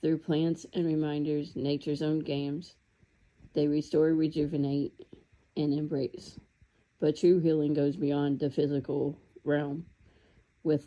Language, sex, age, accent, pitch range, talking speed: English, female, 40-59, American, 140-155 Hz, 115 wpm